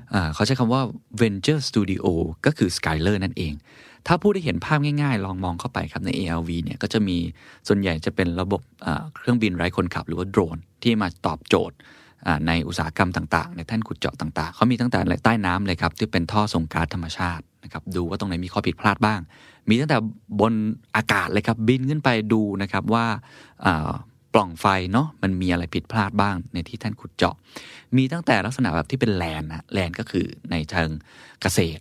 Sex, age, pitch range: male, 20-39, 90-115 Hz